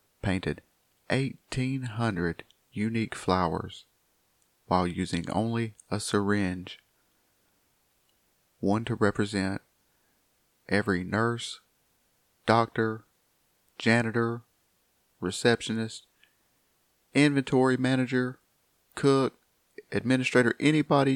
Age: 40-59